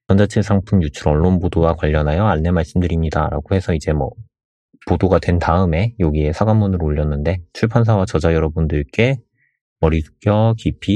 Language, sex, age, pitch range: Korean, male, 30-49, 85-110 Hz